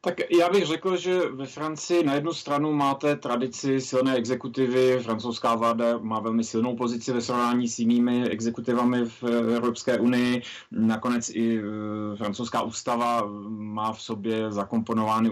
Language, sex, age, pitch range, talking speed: Czech, male, 30-49, 115-130 Hz, 140 wpm